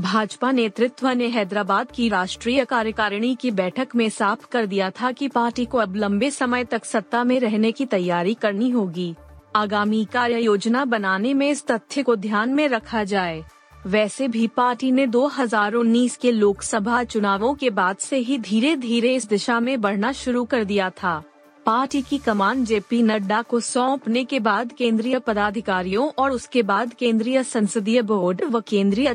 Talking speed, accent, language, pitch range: 165 wpm, native, Hindi, 205-250 Hz